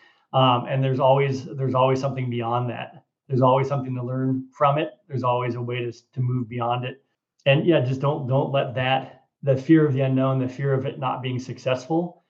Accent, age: American, 30-49